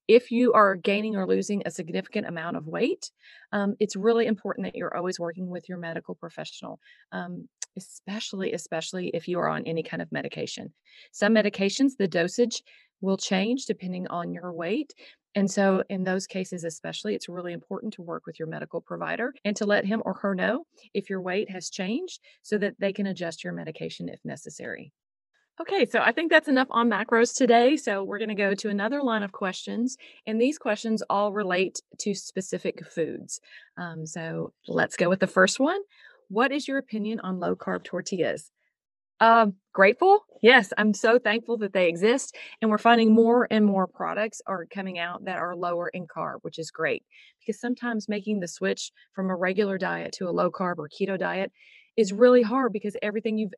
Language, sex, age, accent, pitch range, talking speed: English, female, 40-59, American, 185-230 Hz, 195 wpm